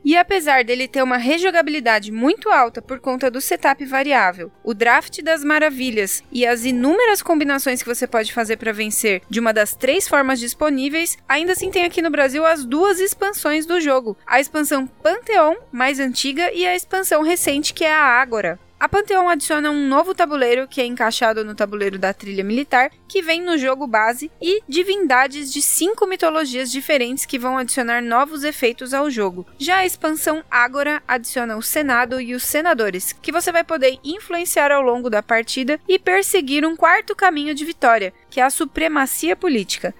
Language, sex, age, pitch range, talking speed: Portuguese, female, 10-29, 240-325 Hz, 180 wpm